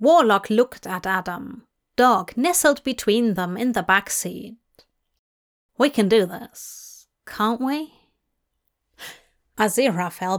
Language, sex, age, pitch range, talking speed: English, female, 30-49, 195-265 Hz, 110 wpm